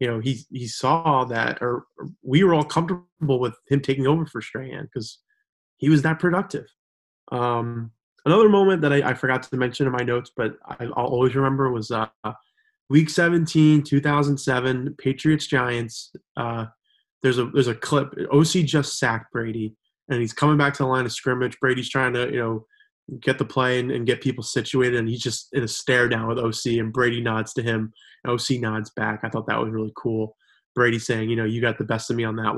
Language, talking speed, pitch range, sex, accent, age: English, 210 wpm, 115-140 Hz, male, American, 20-39